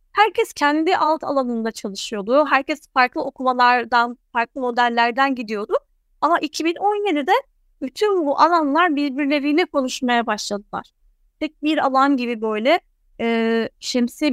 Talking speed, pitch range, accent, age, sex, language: 105 wpm, 245-305 Hz, native, 30-49, female, Turkish